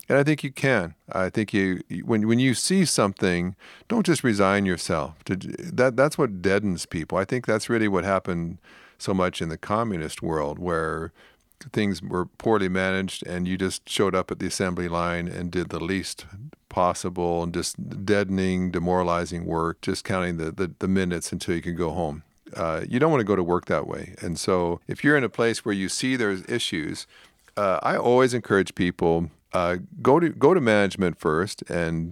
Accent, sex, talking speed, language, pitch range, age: American, male, 195 wpm, English, 90-110 Hz, 50-69